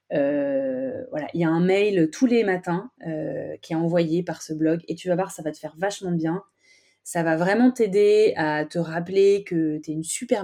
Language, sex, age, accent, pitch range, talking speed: French, female, 20-39, French, 160-205 Hz, 225 wpm